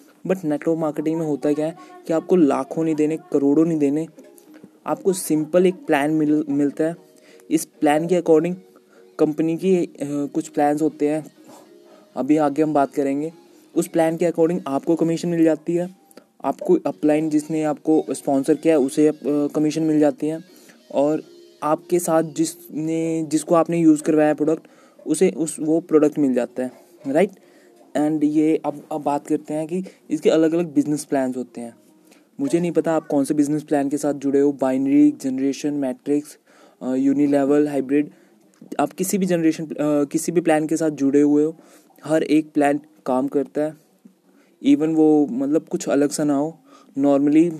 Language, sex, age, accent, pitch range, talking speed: Hindi, male, 20-39, native, 145-160 Hz, 170 wpm